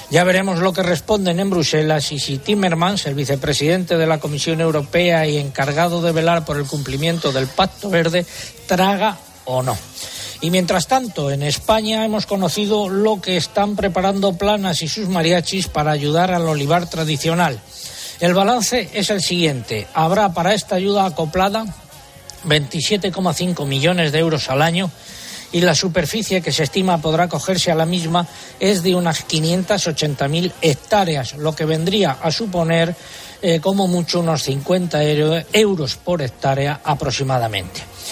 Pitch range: 150-185 Hz